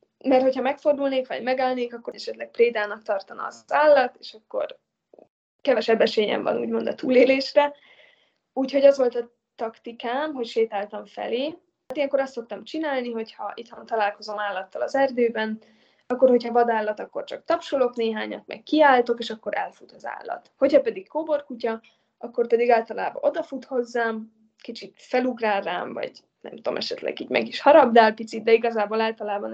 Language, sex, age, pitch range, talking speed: Hungarian, female, 20-39, 225-275 Hz, 155 wpm